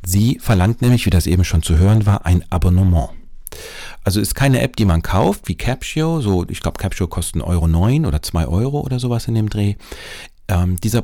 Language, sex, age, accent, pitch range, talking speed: German, male, 40-59, German, 85-115 Hz, 205 wpm